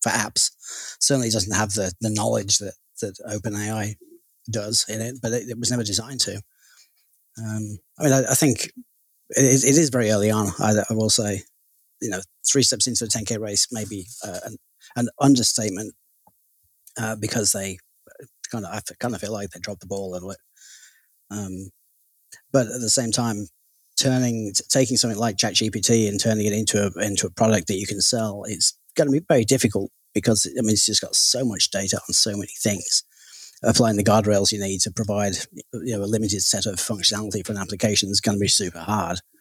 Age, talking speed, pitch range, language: 30-49, 205 wpm, 100-115 Hz, English